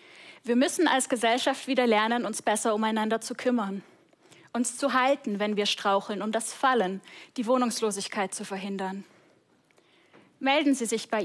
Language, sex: German, female